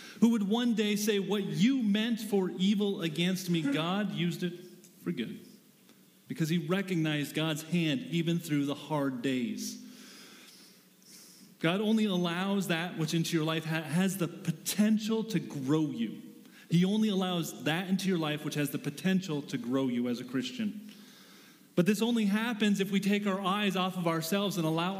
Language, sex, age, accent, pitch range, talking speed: English, male, 30-49, American, 170-215 Hz, 175 wpm